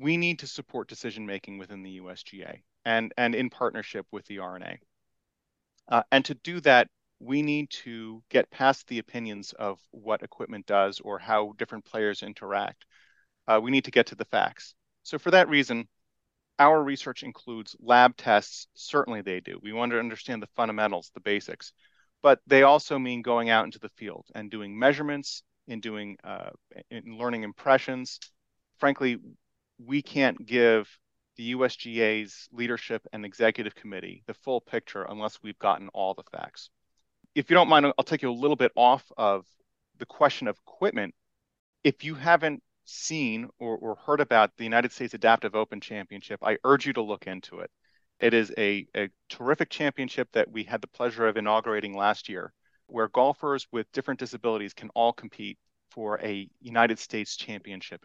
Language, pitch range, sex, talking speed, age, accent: English, 105-135 Hz, male, 170 wpm, 30-49, American